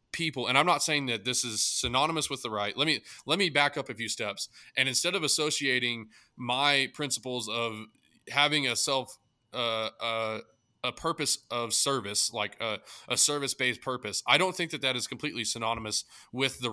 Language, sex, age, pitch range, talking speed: English, male, 20-39, 115-140 Hz, 195 wpm